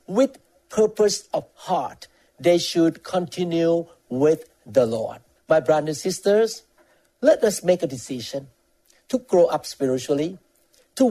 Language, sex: English, male